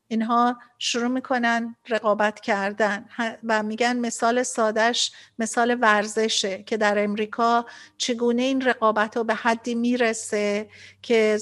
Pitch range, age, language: 220-255 Hz, 50-69, Persian